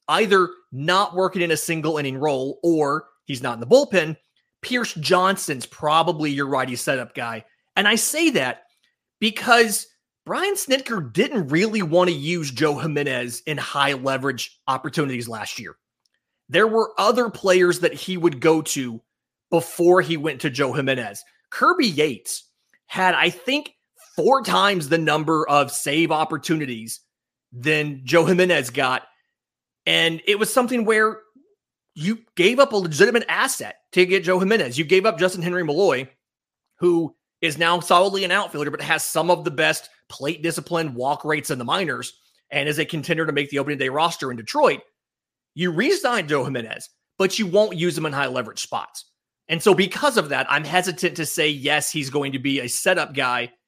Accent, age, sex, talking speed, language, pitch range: American, 30-49, male, 170 wpm, English, 140-190 Hz